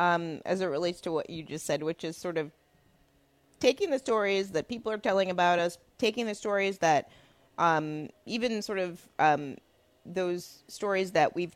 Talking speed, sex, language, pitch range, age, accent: 180 wpm, female, English, 165-220 Hz, 20-39, American